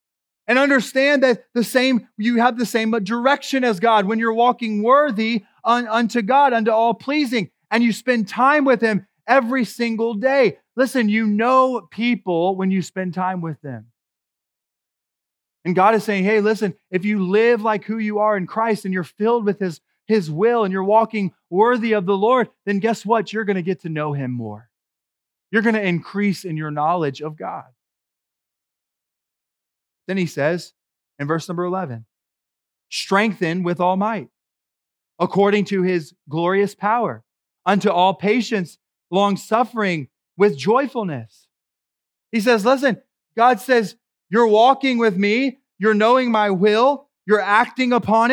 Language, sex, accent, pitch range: English, male, American, 190-245 Hz